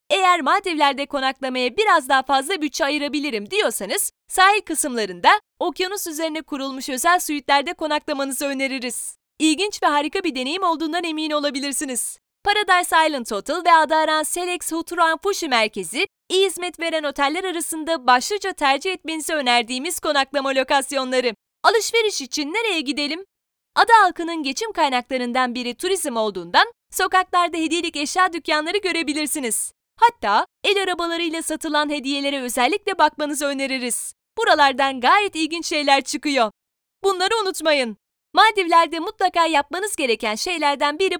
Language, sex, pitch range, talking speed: Turkish, female, 275-355 Hz, 120 wpm